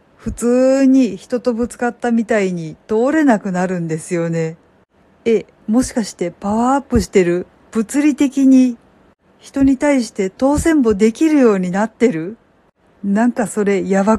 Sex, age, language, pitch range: female, 50-69, Japanese, 200-255 Hz